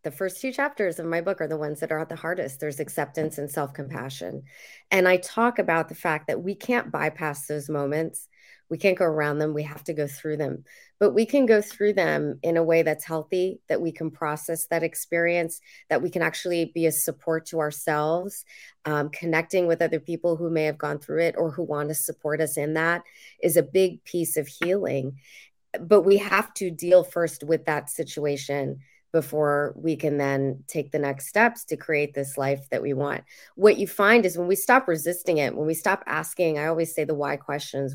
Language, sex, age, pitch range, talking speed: English, female, 30-49, 150-175 Hz, 215 wpm